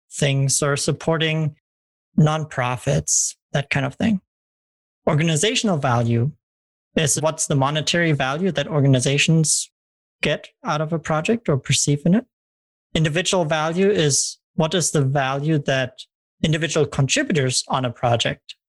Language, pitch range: English, 130-160 Hz